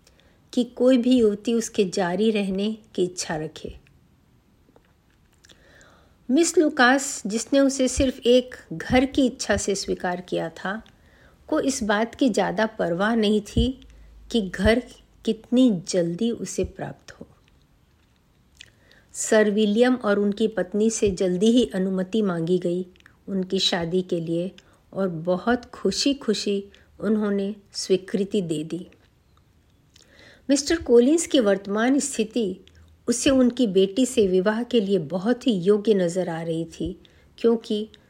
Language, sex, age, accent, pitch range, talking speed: Hindi, female, 50-69, native, 185-245 Hz, 130 wpm